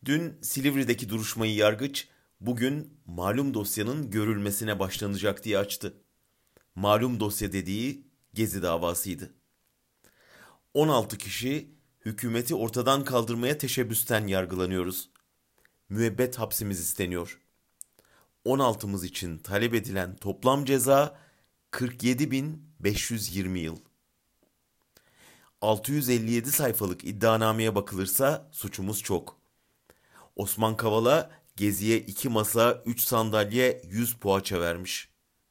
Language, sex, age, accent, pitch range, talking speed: German, male, 40-59, Turkish, 100-130 Hz, 85 wpm